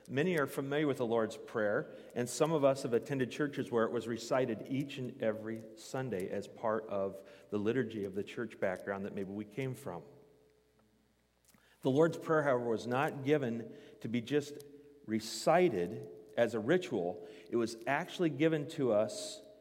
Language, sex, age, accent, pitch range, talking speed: English, male, 40-59, American, 115-150 Hz, 170 wpm